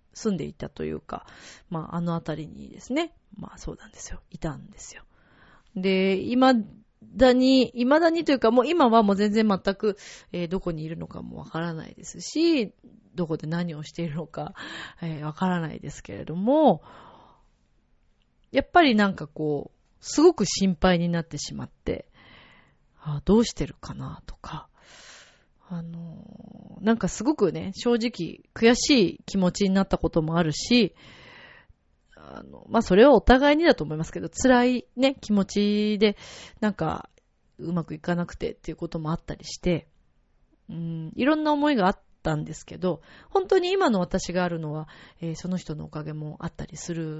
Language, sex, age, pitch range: Japanese, female, 30-49, 165-230 Hz